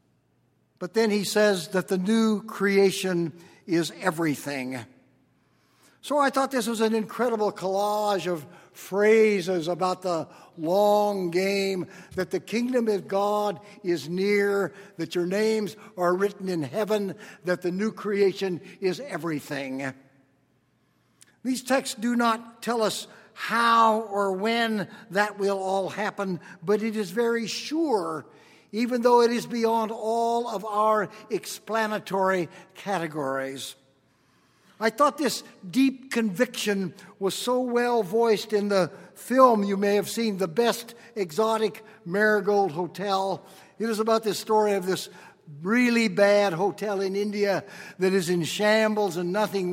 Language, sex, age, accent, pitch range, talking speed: English, male, 60-79, American, 185-220 Hz, 135 wpm